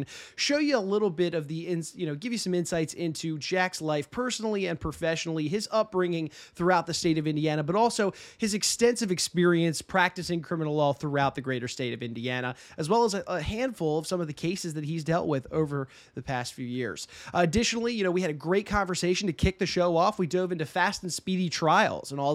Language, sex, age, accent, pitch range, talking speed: English, male, 30-49, American, 150-195 Hz, 225 wpm